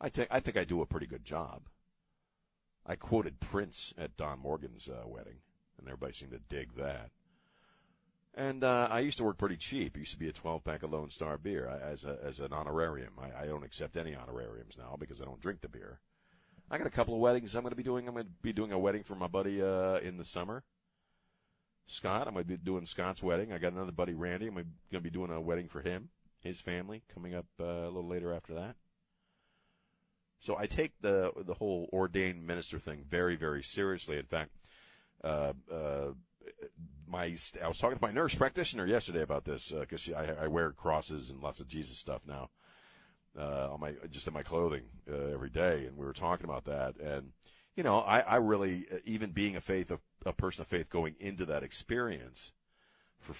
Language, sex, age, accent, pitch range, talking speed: English, male, 50-69, American, 80-110 Hz, 215 wpm